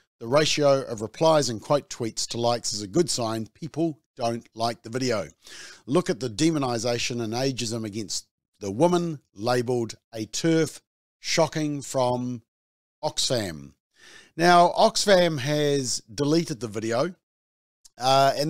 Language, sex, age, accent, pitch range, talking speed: English, male, 50-69, Australian, 115-150 Hz, 135 wpm